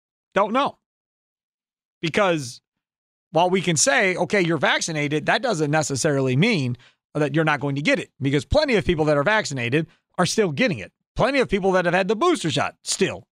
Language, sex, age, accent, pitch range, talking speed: English, male, 40-59, American, 150-195 Hz, 190 wpm